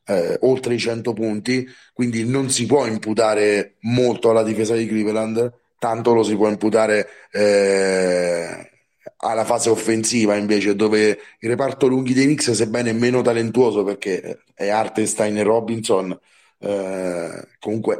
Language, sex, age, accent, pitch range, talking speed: Italian, male, 30-49, native, 110-120 Hz, 135 wpm